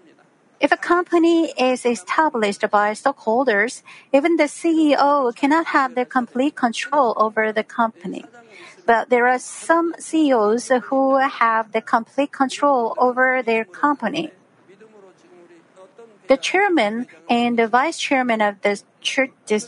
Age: 50-69